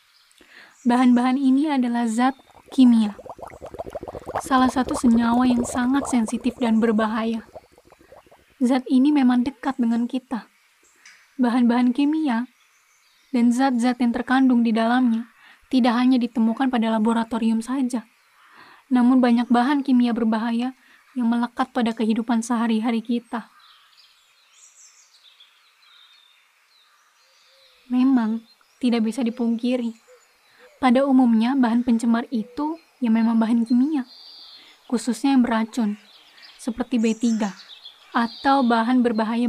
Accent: native